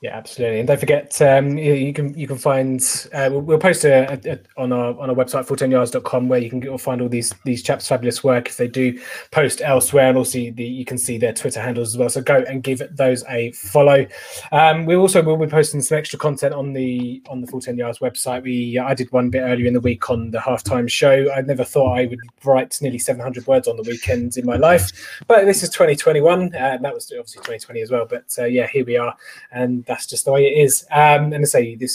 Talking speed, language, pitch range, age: 245 wpm, English, 125-150 Hz, 20-39